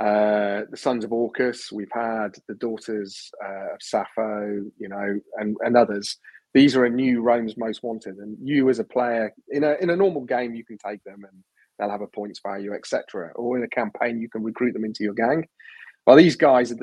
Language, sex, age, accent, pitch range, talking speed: English, male, 30-49, British, 105-120 Hz, 215 wpm